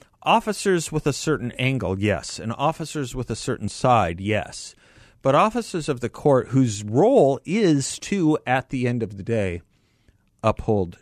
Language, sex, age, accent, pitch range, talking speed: English, male, 50-69, American, 100-130 Hz, 160 wpm